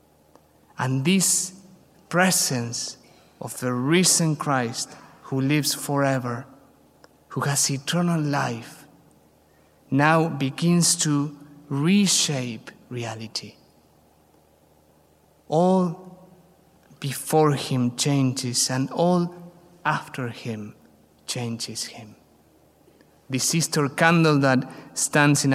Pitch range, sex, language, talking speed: 105-150 Hz, male, English, 80 wpm